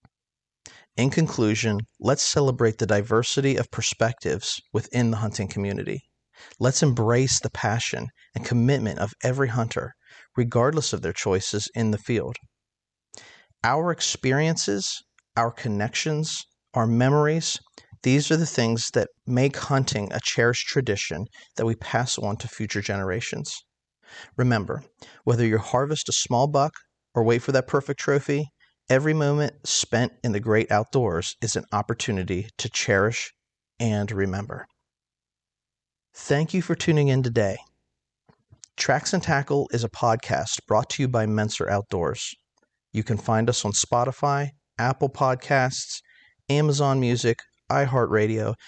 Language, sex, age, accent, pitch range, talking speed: English, male, 40-59, American, 110-135 Hz, 130 wpm